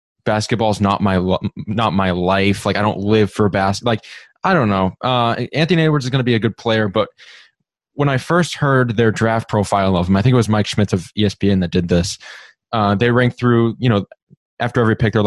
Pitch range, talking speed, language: 105-125 Hz, 230 wpm, English